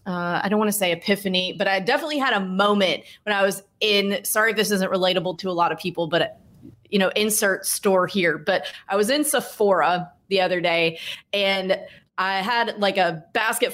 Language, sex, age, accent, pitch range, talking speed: English, female, 30-49, American, 180-205 Hz, 200 wpm